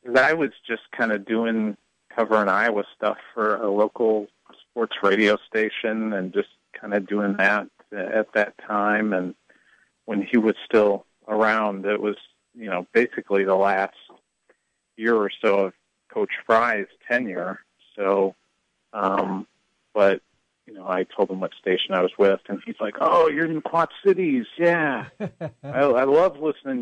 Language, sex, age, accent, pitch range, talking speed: English, male, 40-59, American, 105-120 Hz, 160 wpm